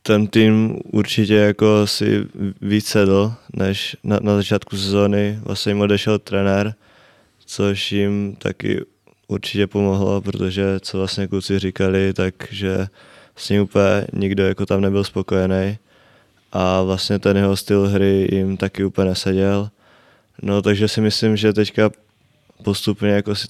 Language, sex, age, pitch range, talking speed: Czech, male, 20-39, 95-105 Hz, 140 wpm